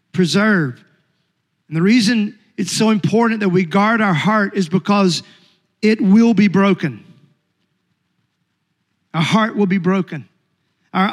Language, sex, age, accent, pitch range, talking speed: English, male, 40-59, American, 175-215 Hz, 130 wpm